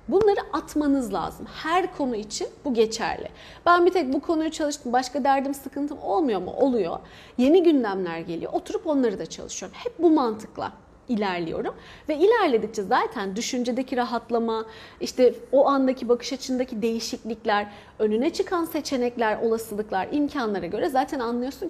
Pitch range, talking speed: 220-315 Hz, 140 wpm